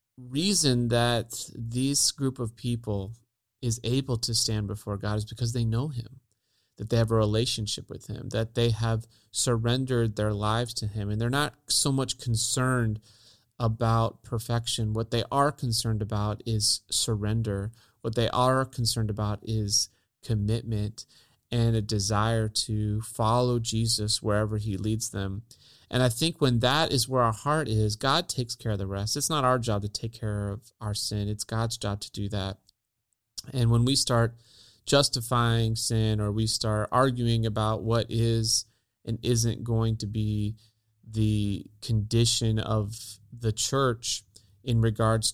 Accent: American